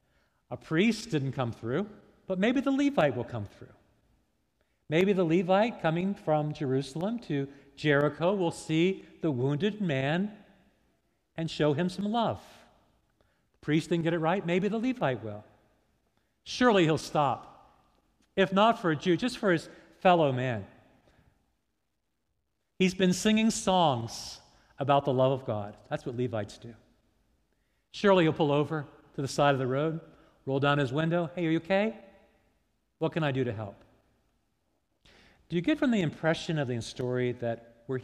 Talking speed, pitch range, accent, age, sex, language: 160 wpm, 115-175 Hz, American, 50-69, male, English